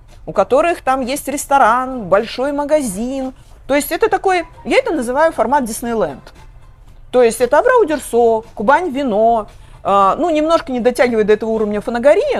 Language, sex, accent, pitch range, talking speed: Russian, female, native, 205-285 Hz, 145 wpm